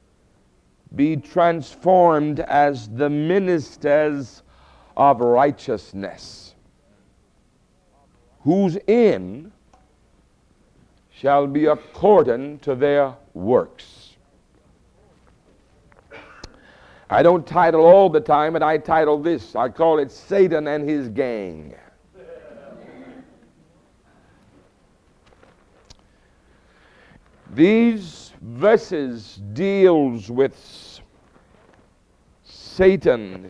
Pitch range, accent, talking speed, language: 120-165 Hz, American, 65 wpm, English